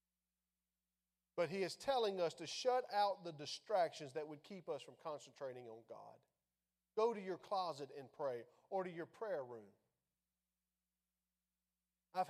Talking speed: 145 wpm